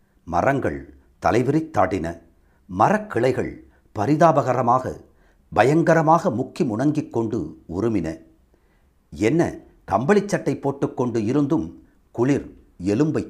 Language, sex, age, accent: Tamil, male, 60-79, native